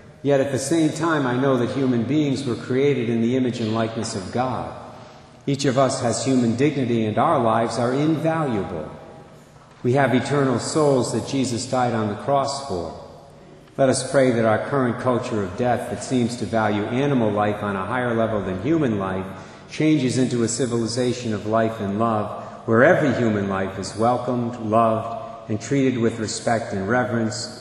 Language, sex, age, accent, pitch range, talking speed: English, male, 50-69, American, 105-130 Hz, 185 wpm